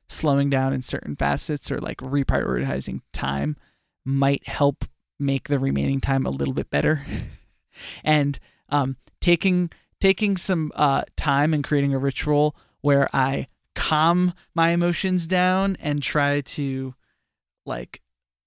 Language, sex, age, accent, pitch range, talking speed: English, male, 20-39, American, 135-165 Hz, 130 wpm